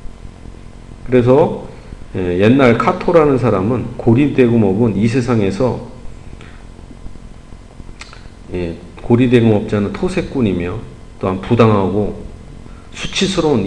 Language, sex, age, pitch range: Korean, male, 40-59, 100-125 Hz